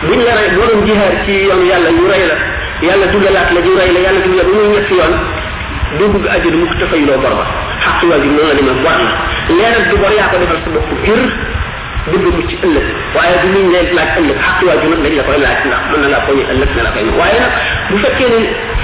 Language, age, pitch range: French, 50-69, 175-235 Hz